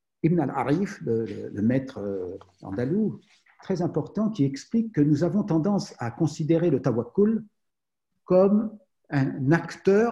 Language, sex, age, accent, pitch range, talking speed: French, male, 60-79, French, 125-175 Hz, 125 wpm